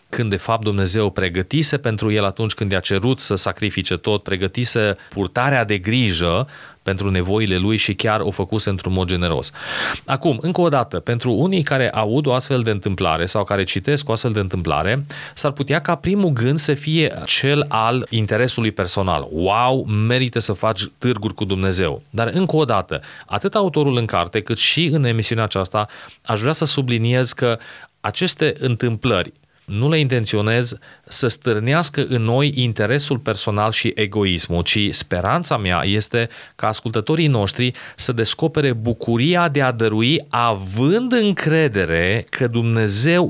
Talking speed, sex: 155 wpm, male